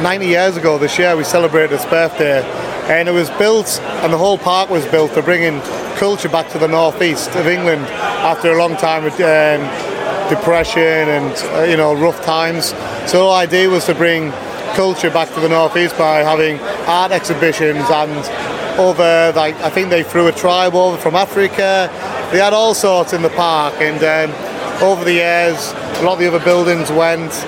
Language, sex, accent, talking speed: Dutch, male, British, 190 wpm